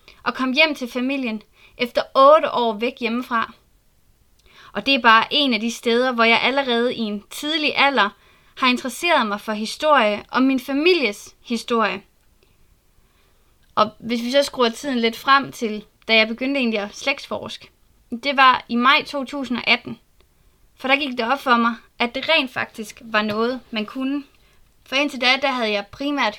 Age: 20-39